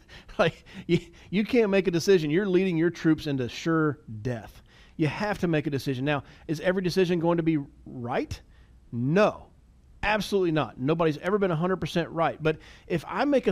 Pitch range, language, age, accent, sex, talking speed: 145-195 Hz, English, 40-59, American, male, 180 wpm